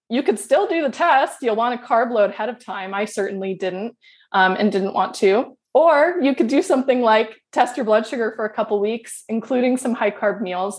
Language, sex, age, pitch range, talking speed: English, female, 20-39, 200-250 Hz, 235 wpm